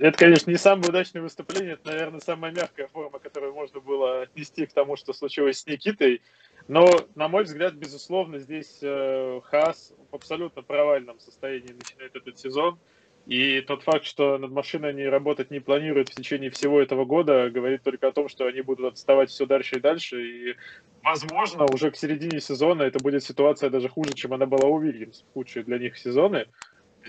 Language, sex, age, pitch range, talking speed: Russian, male, 20-39, 135-155 Hz, 185 wpm